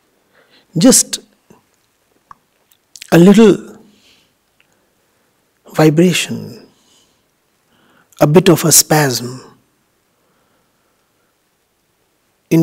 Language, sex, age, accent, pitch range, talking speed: English, male, 60-79, Indian, 140-190 Hz, 50 wpm